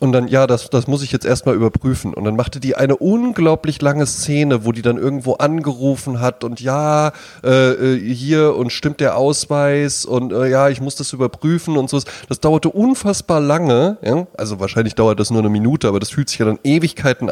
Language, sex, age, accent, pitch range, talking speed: German, male, 20-39, German, 120-145 Hz, 210 wpm